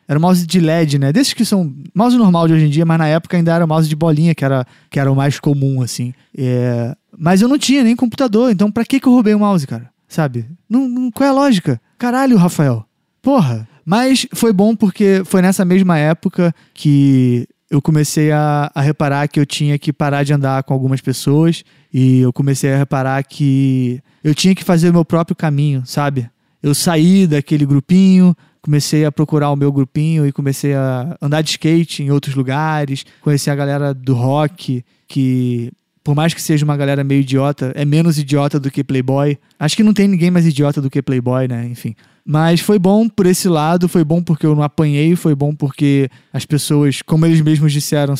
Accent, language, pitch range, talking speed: Brazilian, Portuguese, 140-175 Hz, 210 wpm